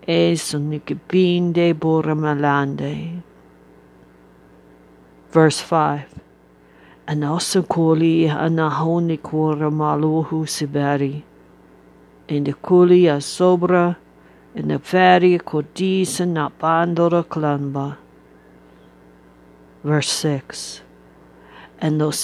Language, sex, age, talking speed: English, female, 50-69, 70 wpm